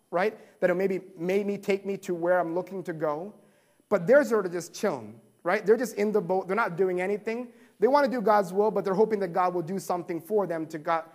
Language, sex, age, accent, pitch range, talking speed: English, male, 30-49, American, 165-210 Hz, 260 wpm